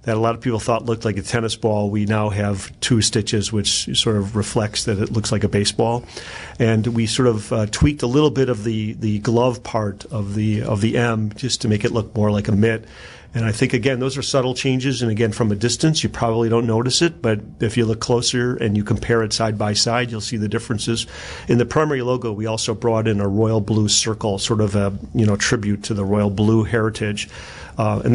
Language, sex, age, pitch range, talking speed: English, male, 40-59, 105-120 Hz, 240 wpm